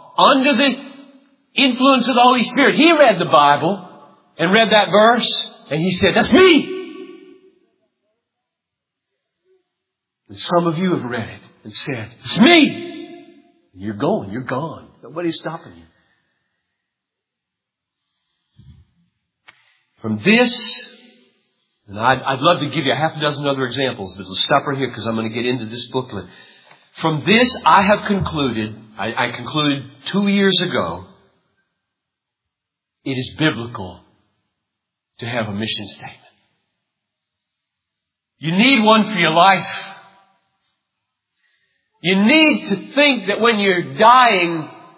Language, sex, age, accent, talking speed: English, male, 50-69, American, 130 wpm